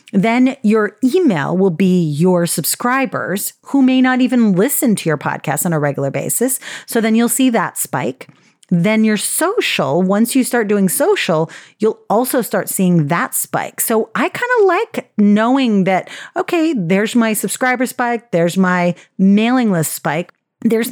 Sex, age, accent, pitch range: female, 40-59, American, 170-235 Hz